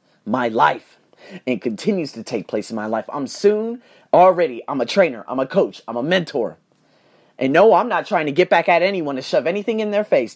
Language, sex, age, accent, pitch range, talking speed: English, male, 30-49, American, 140-185 Hz, 220 wpm